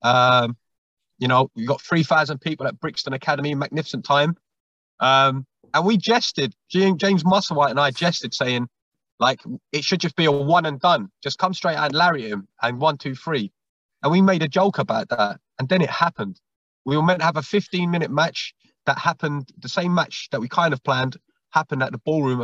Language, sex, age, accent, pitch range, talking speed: English, male, 20-39, British, 135-175 Hz, 200 wpm